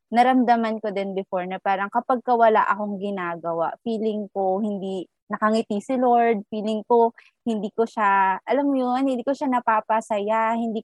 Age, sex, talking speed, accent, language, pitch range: 20-39, female, 160 wpm, native, Filipino, 180-230 Hz